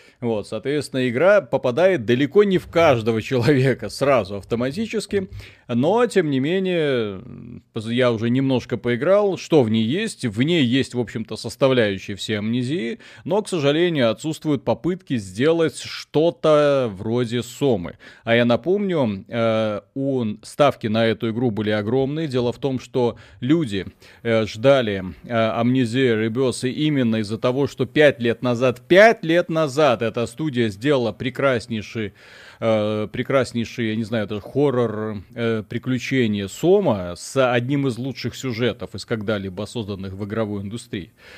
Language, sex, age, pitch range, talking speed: Russian, male, 30-49, 110-140 Hz, 140 wpm